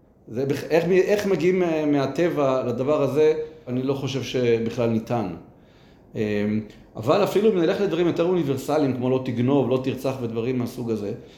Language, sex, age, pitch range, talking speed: Hebrew, male, 40-59, 125-165 Hz, 140 wpm